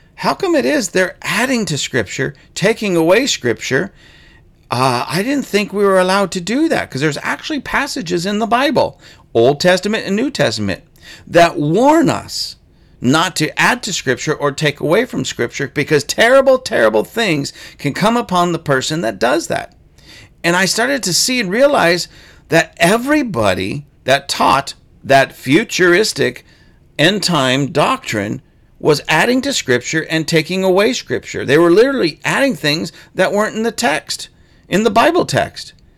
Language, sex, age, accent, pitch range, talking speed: English, male, 40-59, American, 145-220 Hz, 160 wpm